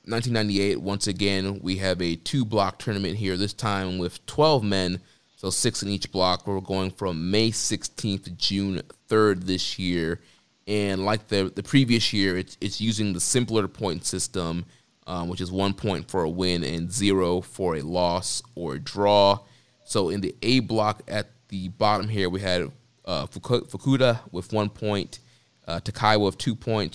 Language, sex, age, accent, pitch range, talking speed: English, male, 20-39, American, 95-115 Hz, 180 wpm